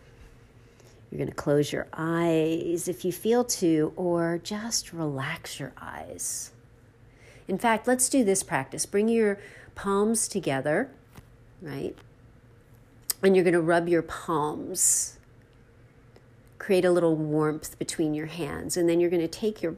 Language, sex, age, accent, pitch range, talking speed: English, female, 50-69, American, 130-195 Hz, 145 wpm